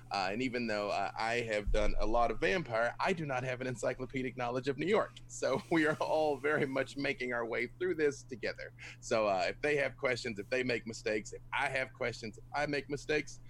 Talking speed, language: 230 wpm, English